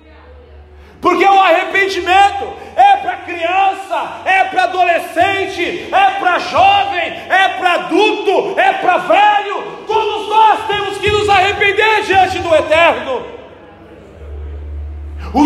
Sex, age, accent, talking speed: male, 40-59, Brazilian, 110 wpm